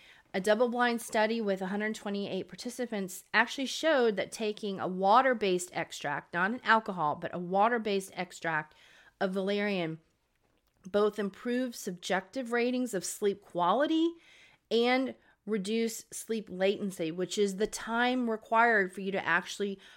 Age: 30-49